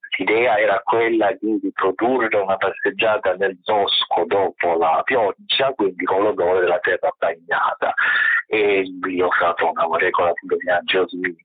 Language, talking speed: Italian, 135 wpm